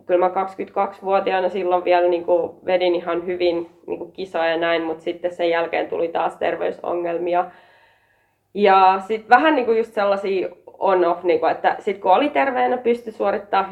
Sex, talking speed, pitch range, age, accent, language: female, 160 wpm, 170-200 Hz, 20-39, native, Finnish